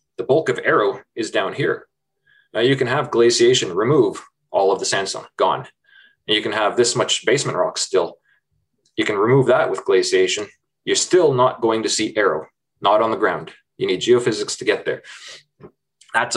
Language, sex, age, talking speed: English, male, 20-39, 185 wpm